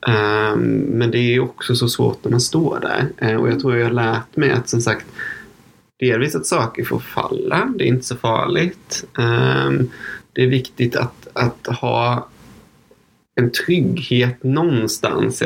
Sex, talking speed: male, 155 wpm